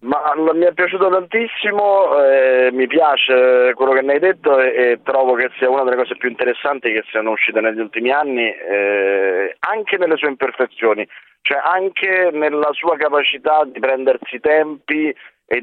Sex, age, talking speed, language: male, 30-49, 175 wpm, Italian